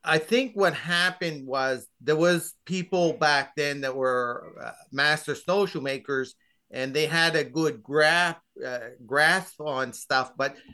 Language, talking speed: English, 145 wpm